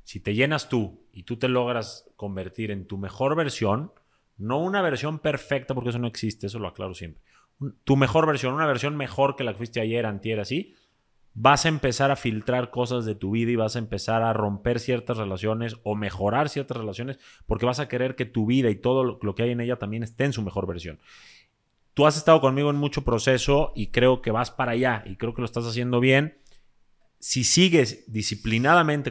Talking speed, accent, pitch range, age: 215 wpm, Mexican, 105-135 Hz, 30-49